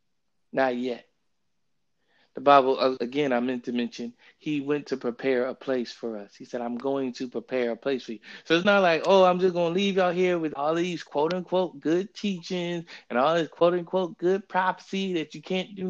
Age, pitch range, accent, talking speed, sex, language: 20-39, 125-170 Hz, American, 210 wpm, male, English